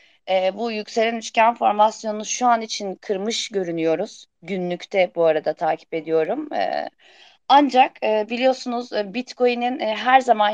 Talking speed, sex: 130 wpm, female